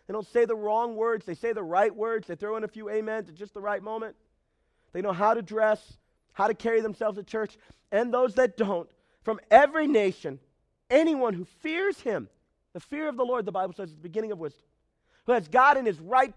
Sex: male